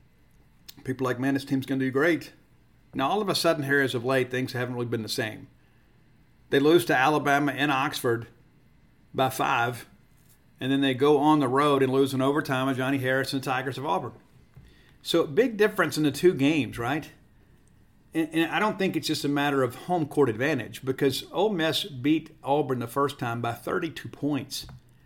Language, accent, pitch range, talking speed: English, American, 130-150 Hz, 200 wpm